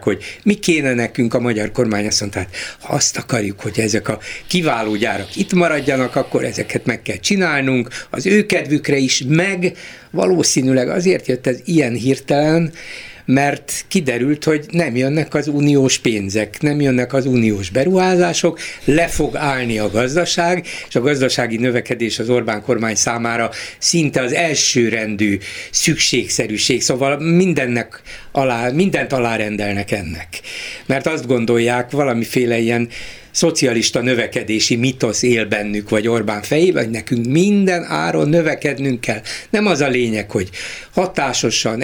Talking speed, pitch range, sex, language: 140 wpm, 115-160 Hz, male, Hungarian